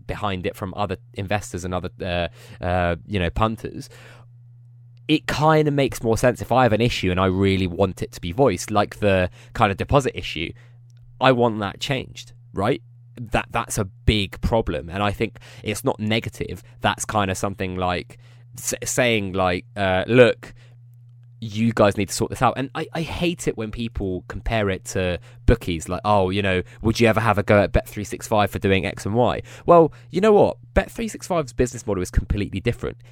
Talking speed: 195 wpm